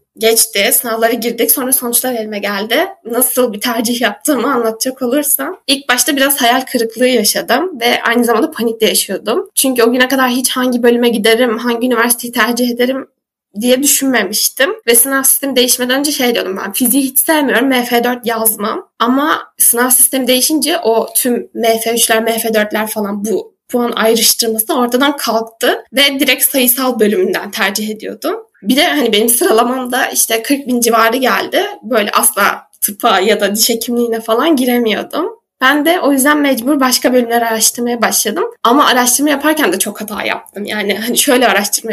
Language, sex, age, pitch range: Turkish, female, 10-29, 225-265 Hz